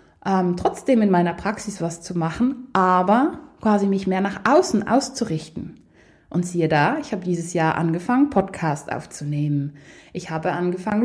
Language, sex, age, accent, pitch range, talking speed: German, female, 20-39, German, 170-230 Hz, 150 wpm